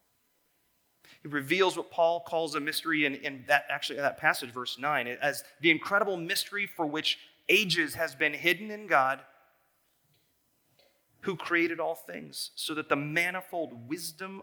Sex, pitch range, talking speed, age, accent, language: male, 125-155 Hz, 155 wpm, 30-49, American, English